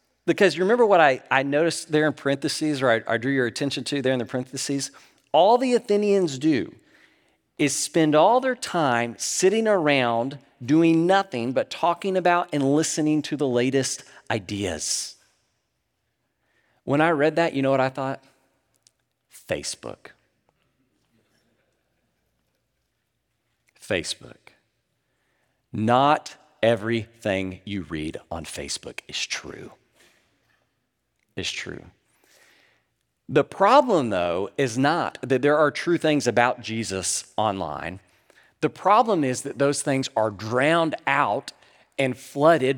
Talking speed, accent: 125 wpm, American